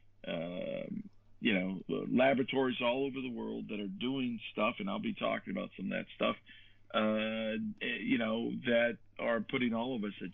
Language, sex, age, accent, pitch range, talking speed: English, male, 50-69, American, 105-160 Hz, 185 wpm